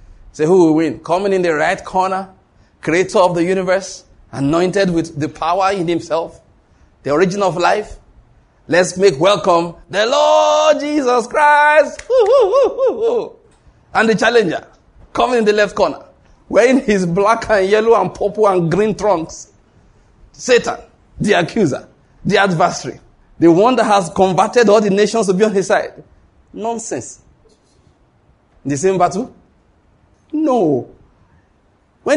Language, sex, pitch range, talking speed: English, male, 155-220 Hz, 145 wpm